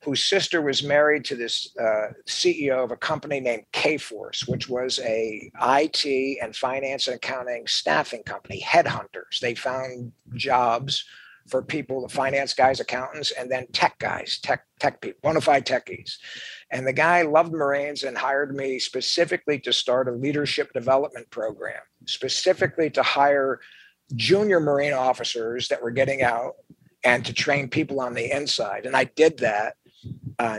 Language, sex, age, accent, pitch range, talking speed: English, male, 50-69, American, 125-150 Hz, 155 wpm